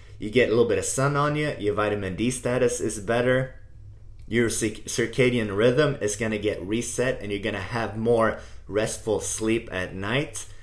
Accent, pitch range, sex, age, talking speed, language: American, 105-125 Hz, male, 30-49, 185 wpm, English